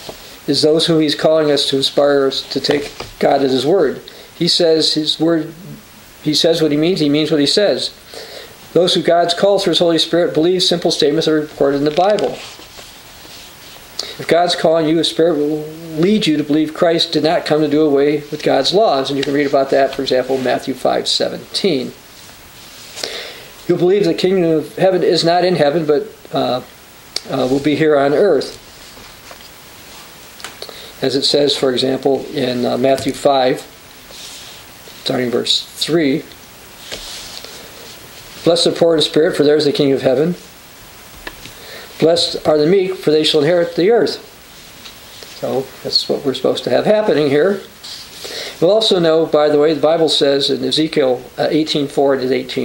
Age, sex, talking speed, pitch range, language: 50-69, male, 175 wpm, 140-170 Hz, English